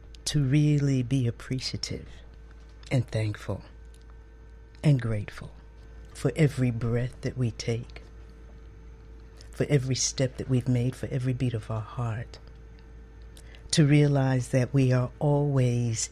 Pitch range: 115-145 Hz